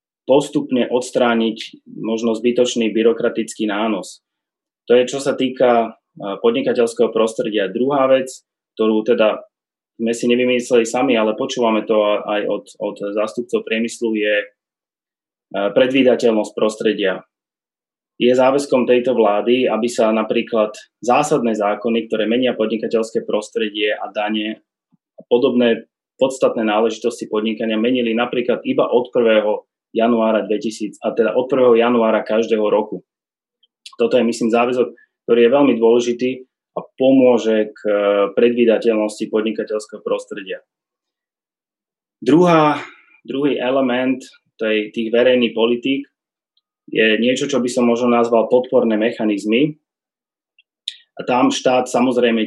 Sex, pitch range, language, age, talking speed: male, 110-125 Hz, Slovak, 20-39, 110 wpm